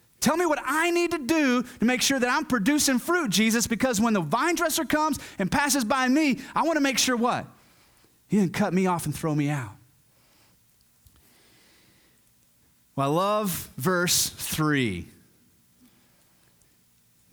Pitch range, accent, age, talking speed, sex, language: 160-245 Hz, American, 30-49, 155 wpm, male, English